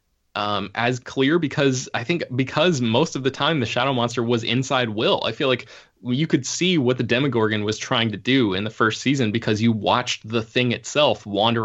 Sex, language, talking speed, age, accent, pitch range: male, English, 210 wpm, 20-39, American, 110-130 Hz